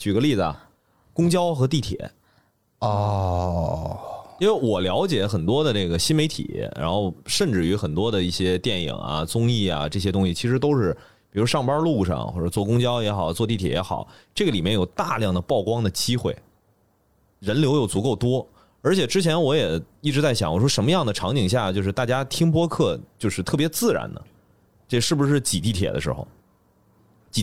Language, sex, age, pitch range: Chinese, male, 30-49, 95-125 Hz